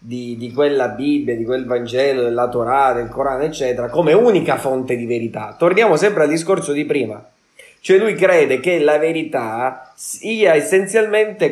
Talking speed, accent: 160 wpm, native